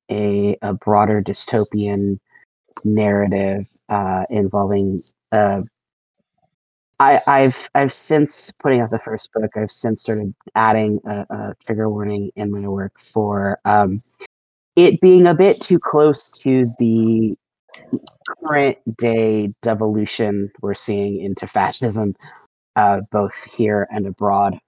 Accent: American